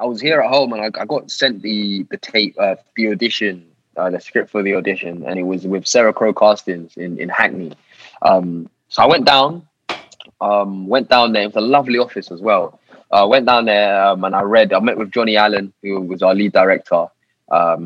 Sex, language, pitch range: male, English, 95-120 Hz